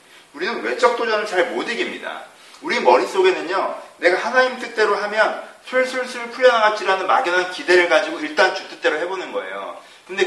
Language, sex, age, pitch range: Korean, male, 30-49, 200-290 Hz